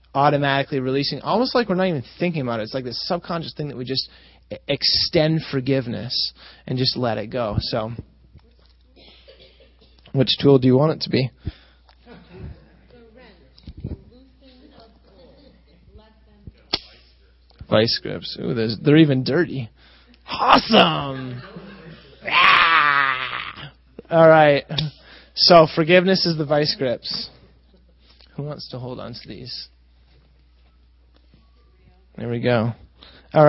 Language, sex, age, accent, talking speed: English, male, 20-39, American, 110 wpm